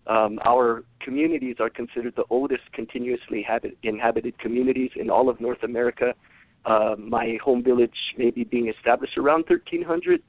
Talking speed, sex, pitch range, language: 145 wpm, male, 120-150 Hz, English